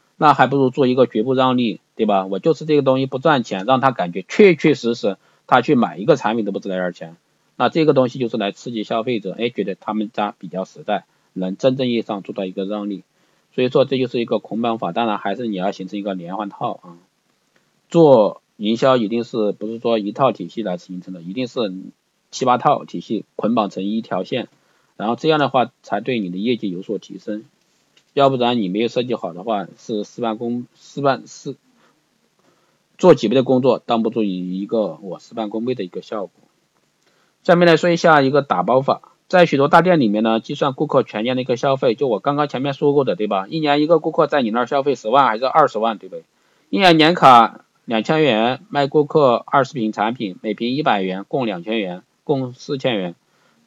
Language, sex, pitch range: Chinese, male, 105-140 Hz